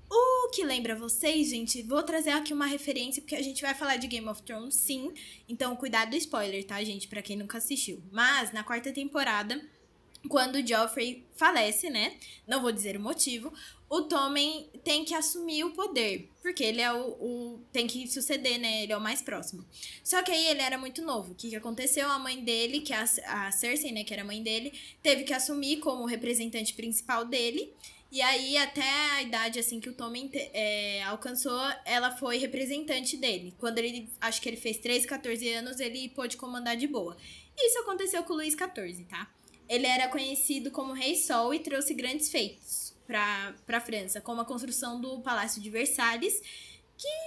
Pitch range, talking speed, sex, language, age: 230-285 Hz, 195 wpm, female, Portuguese, 10-29